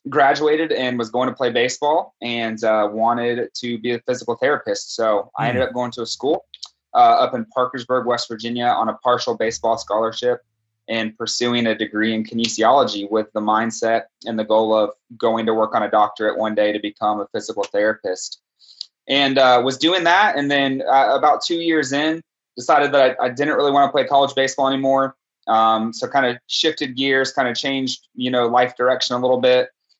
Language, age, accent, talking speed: English, 20-39, American, 200 wpm